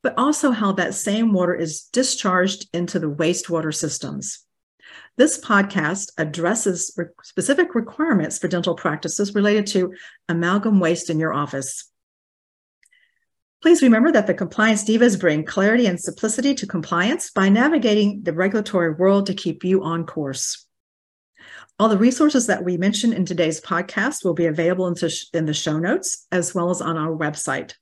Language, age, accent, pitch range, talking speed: English, 50-69, American, 165-210 Hz, 155 wpm